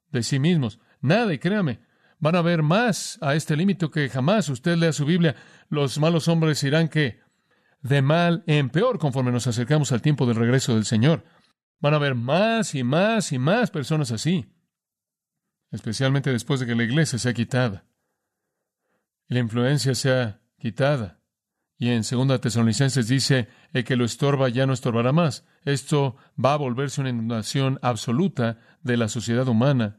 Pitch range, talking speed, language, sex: 125-160 Hz, 170 wpm, Spanish, male